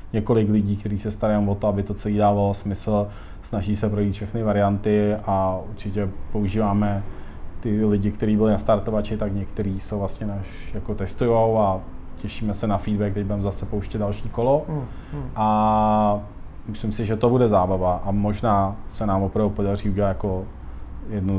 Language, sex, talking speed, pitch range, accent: Czech, male, 170 wpm, 100-110 Hz, native